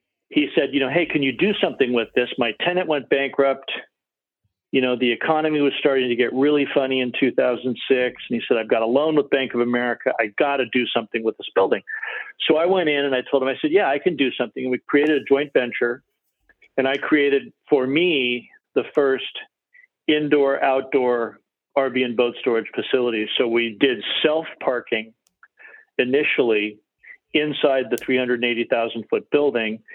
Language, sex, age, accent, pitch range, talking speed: English, male, 50-69, American, 120-150 Hz, 180 wpm